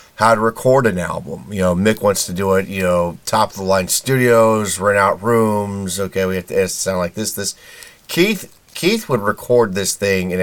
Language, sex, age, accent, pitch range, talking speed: English, male, 30-49, American, 90-120 Hz, 195 wpm